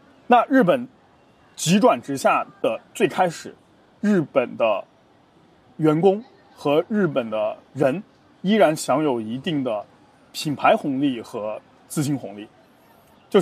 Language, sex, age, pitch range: Chinese, male, 20-39, 135-215 Hz